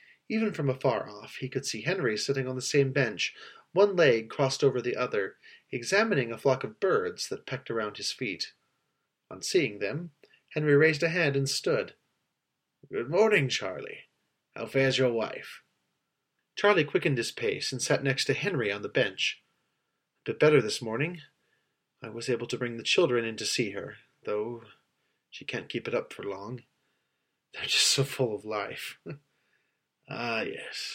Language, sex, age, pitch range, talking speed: English, male, 30-49, 115-155 Hz, 175 wpm